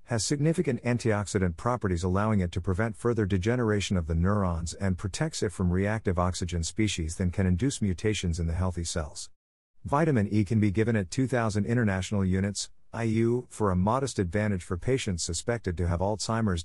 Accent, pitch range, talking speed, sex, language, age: American, 90-115 Hz, 175 wpm, male, English, 50-69